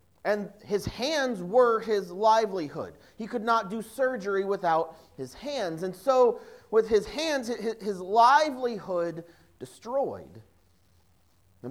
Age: 40-59